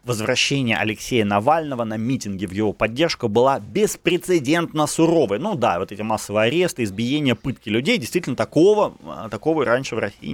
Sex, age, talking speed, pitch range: male, 30-49, 150 wpm, 105-155 Hz